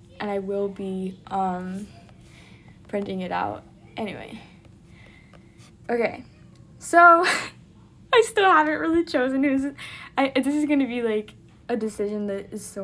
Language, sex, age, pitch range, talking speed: English, female, 10-29, 195-275 Hz, 140 wpm